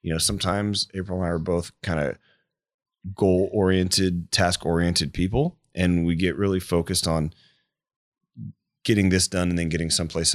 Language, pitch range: English, 85-105 Hz